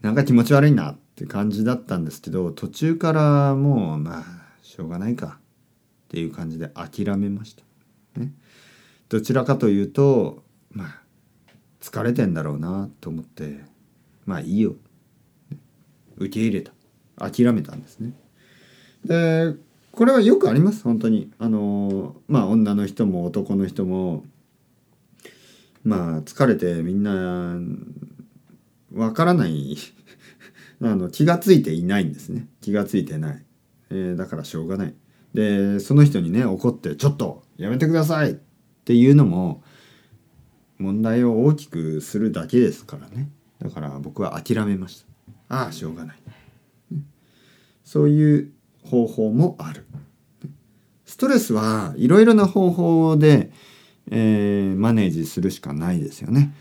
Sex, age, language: male, 40-59, Japanese